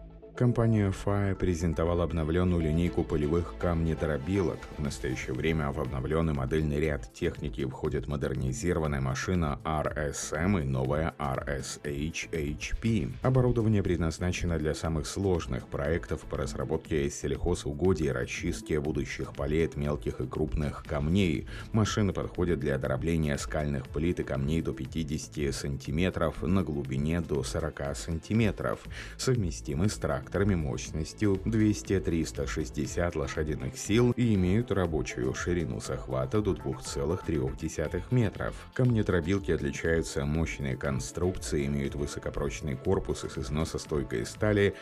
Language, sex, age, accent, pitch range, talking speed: Russian, male, 30-49, native, 70-95 Hz, 105 wpm